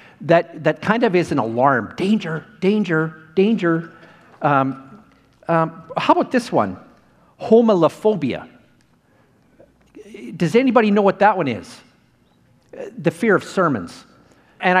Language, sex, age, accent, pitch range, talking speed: English, male, 50-69, American, 145-195 Hz, 120 wpm